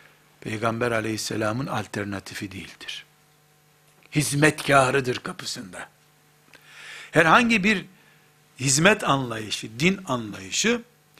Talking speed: 65 wpm